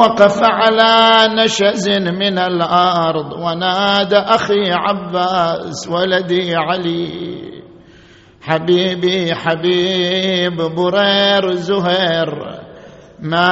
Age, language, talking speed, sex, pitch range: 50-69, Arabic, 65 wpm, male, 165-200 Hz